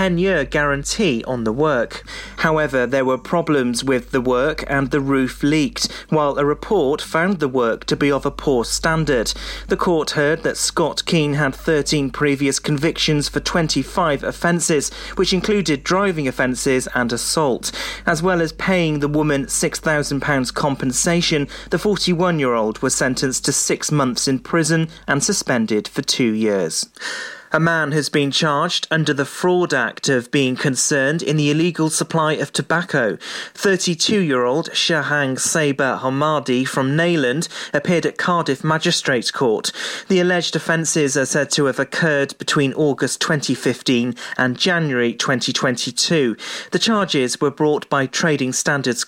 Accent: British